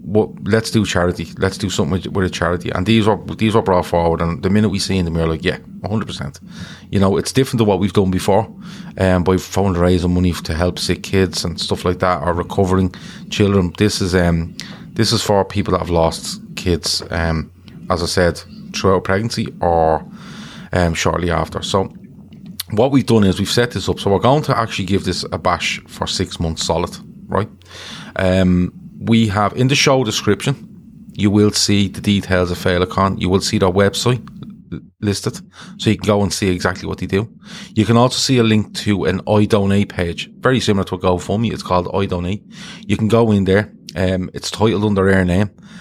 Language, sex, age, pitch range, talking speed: English, male, 30-49, 90-110 Hz, 210 wpm